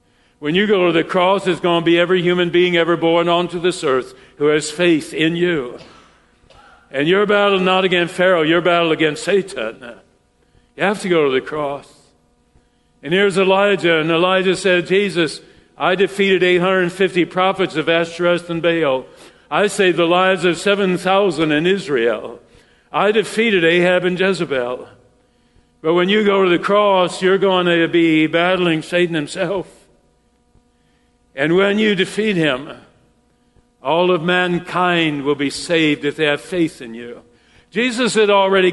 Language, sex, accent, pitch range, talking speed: English, male, American, 155-190 Hz, 160 wpm